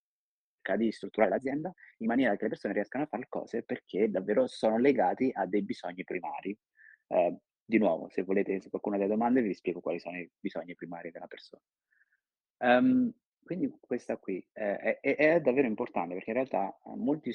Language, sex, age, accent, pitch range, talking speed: Italian, male, 30-49, native, 90-115 Hz, 175 wpm